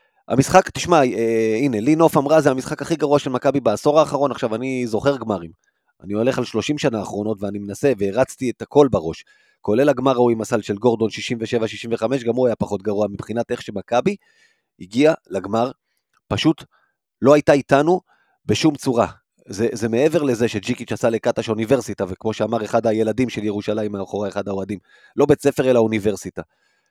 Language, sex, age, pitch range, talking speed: Hebrew, male, 30-49, 110-145 Hz, 165 wpm